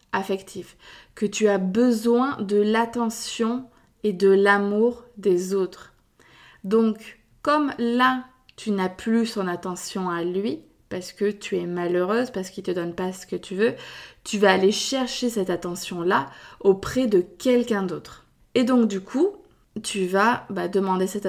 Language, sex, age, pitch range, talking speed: French, female, 20-39, 190-230 Hz, 160 wpm